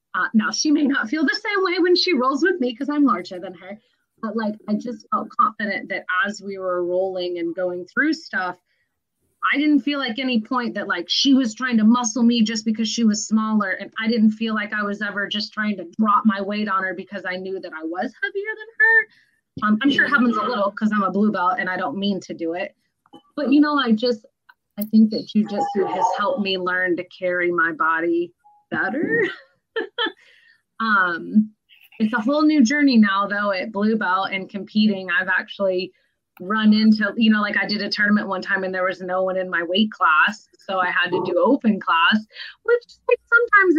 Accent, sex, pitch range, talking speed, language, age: American, female, 195-270 Hz, 220 wpm, English, 30-49